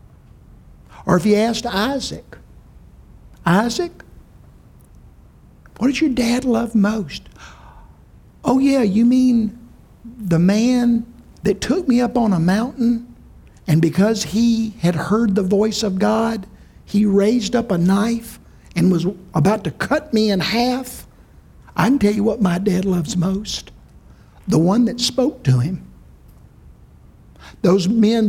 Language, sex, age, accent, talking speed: English, male, 60-79, American, 135 wpm